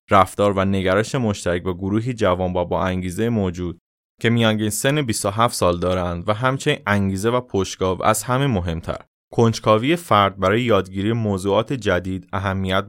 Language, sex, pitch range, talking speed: Persian, male, 95-120 Hz, 150 wpm